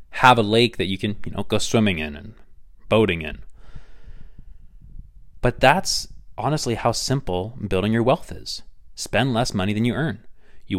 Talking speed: 165 wpm